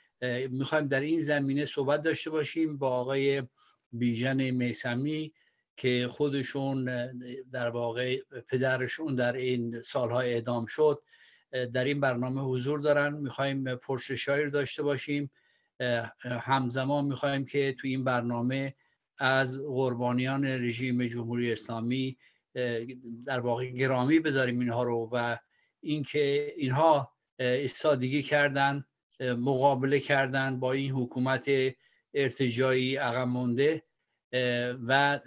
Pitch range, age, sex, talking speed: 125-140 Hz, 50-69, male, 105 wpm